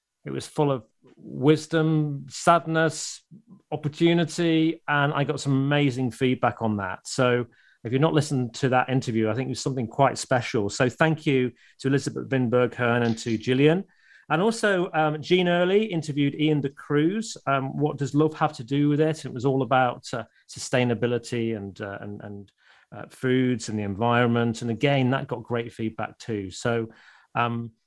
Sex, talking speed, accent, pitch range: male, 175 wpm, British, 120-150 Hz